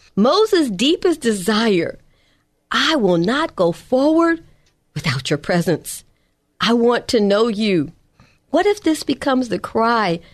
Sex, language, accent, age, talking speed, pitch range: female, English, American, 50-69, 130 wpm, 185-260 Hz